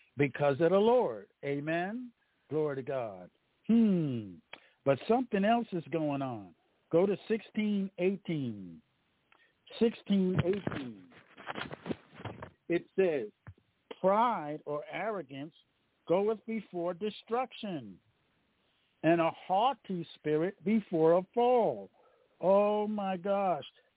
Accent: American